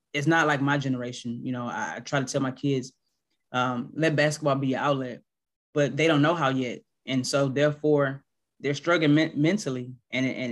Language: English